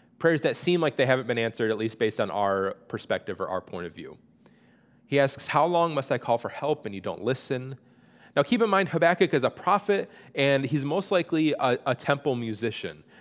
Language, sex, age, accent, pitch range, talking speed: English, male, 30-49, American, 110-150 Hz, 220 wpm